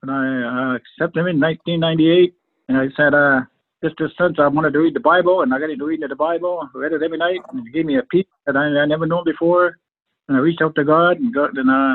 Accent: American